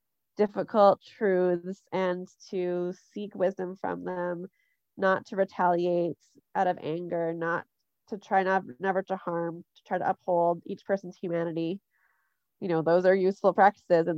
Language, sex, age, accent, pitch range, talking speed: English, female, 20-39, American, 180-215 Hz, 150 wpm